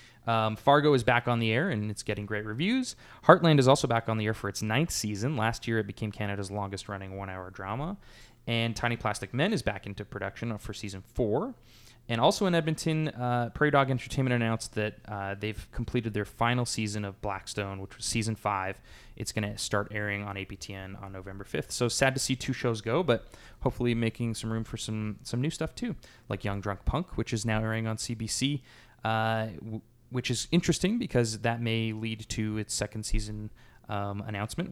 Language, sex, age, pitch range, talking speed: English, male, 20-39, 105-130 Hz, 205 wpm